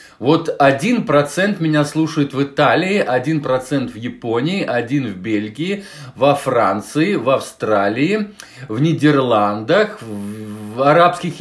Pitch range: 120-165 Hz